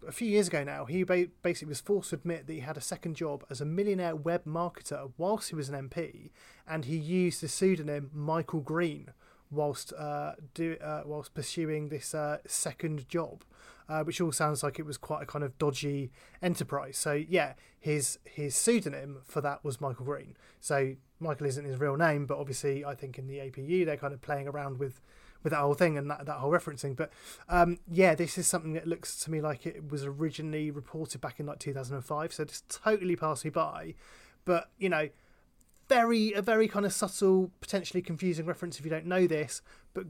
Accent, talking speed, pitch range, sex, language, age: British, 205 wpm, 145-175 Hz, male, English, 30-49